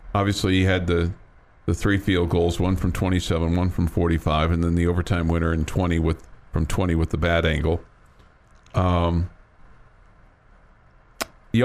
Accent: American